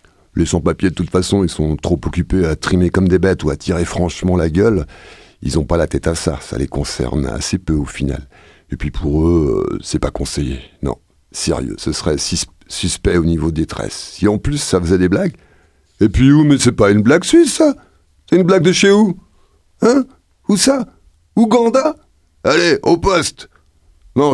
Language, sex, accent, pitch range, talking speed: French, male, French, 85-125 Hz, 200 wpm